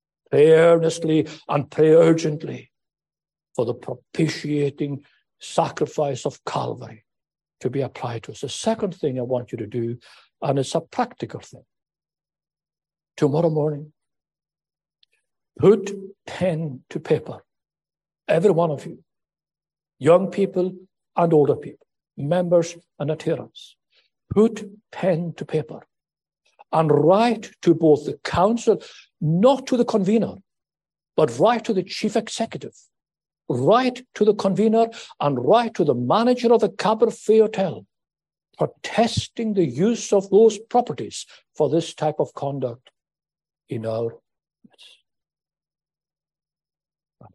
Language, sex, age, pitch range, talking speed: English, male, 60-79, 150-210 Hz, 120 wpm